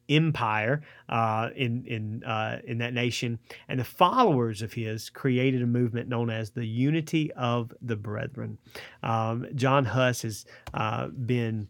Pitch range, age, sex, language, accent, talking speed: 115-135 Hz, 30-49, male, English, American, 150 wpm